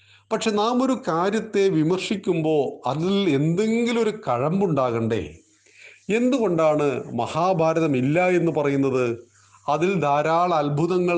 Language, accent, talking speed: Malayalam, native, 90 wpm